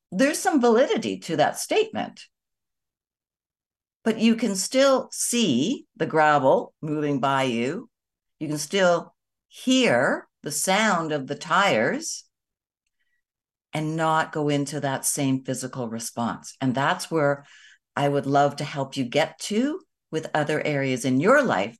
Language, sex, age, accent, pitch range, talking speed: English, female, 60-79, American, 135-190 Hz, 140 wpm